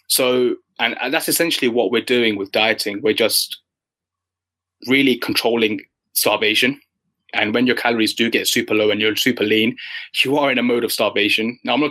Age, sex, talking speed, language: 20-39, male, 185 wpm, English